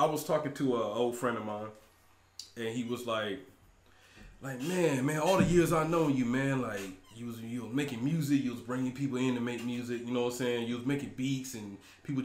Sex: male